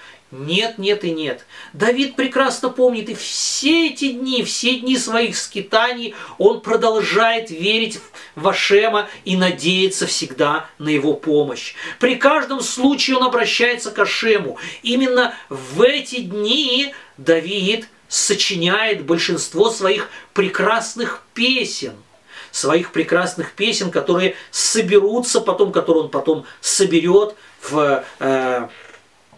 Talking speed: 110 wpm